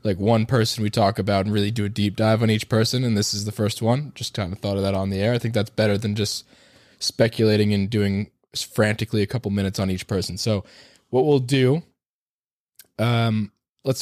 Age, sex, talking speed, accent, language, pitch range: 20-39, male, 225 wpm, American, English, 105-120 Hz